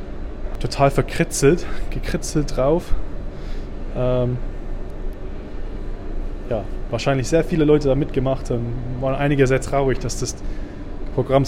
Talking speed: 105 wpm